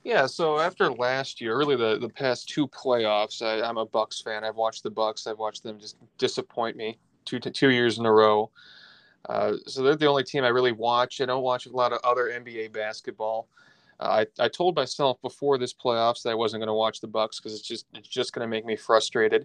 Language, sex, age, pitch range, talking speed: English, male, 20-39, 110-125 Hz, 235 wpm